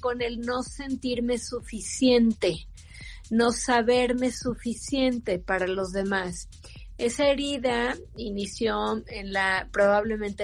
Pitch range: 215-260 Hz